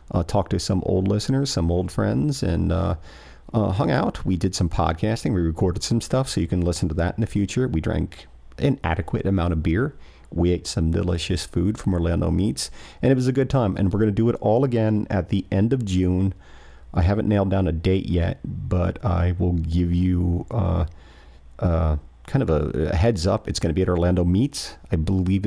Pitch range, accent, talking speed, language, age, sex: 85-100 Hz, American, 220 wpm, English, 40-59, male